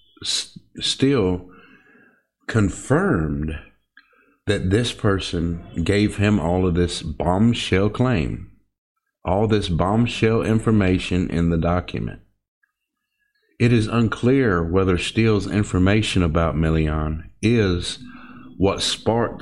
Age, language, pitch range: 50-69, English, 90-120 Hz